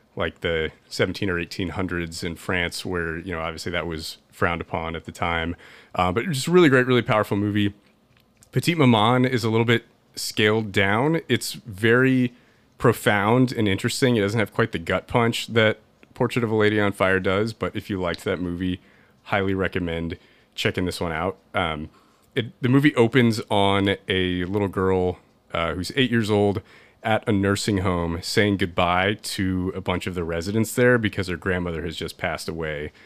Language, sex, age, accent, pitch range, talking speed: English, male, 30-49, American, 85-110 Hz, 185 wpm